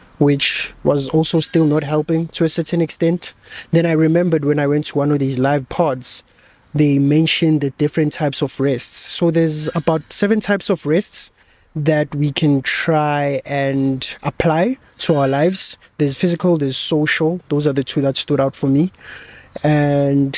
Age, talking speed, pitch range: 20-39, 175 wpm, 140-165 Hz